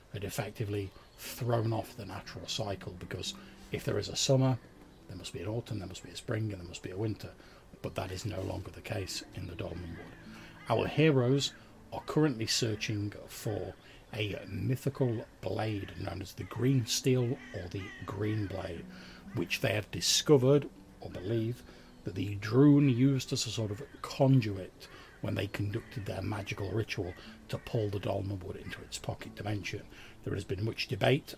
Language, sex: English, male